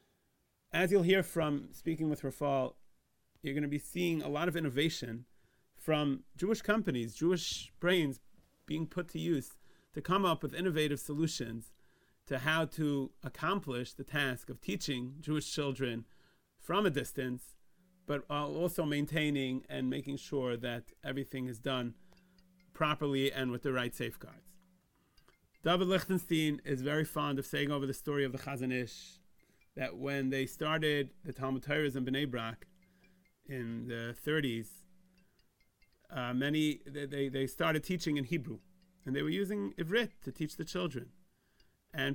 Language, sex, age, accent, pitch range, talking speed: English, male, 30-49, American, 135-180 Hz, 150 wpm